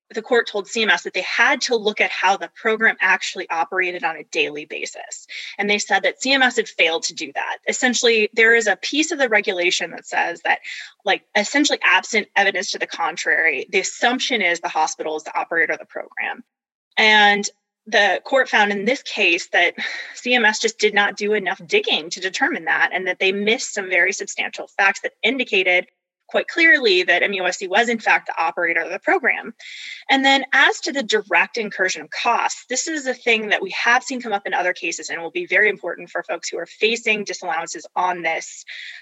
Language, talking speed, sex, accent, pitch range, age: English, 205 wpm, female, American, 195-270 Hz, 20-39